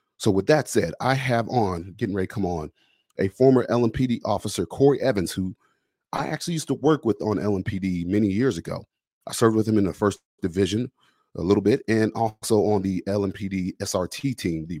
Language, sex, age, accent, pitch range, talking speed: English, male, 30-49, American, 95-125 Hz, 195 wpm